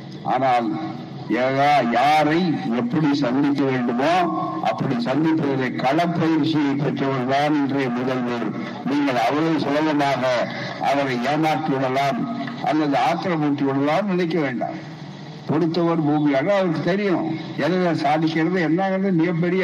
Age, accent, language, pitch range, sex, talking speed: 60-79, native, Tamil, 150-180 Hz, male, 85 wpm